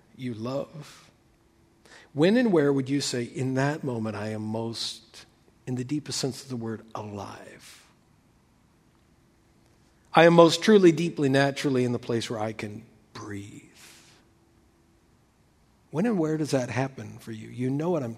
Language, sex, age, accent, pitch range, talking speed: English, male, 50-69, American, 125-175 Hz, 155 wpm